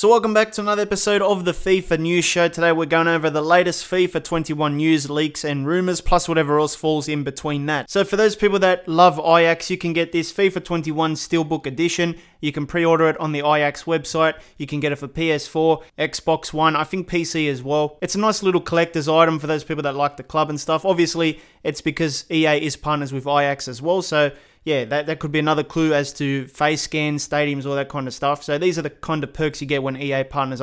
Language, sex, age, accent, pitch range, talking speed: English, male, 20-39, Australian, 150-175 Hz, 235 wpm